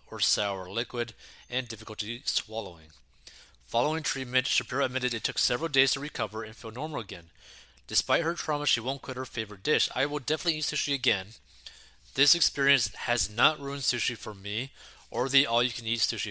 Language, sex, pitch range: English, male, 100-135 Hz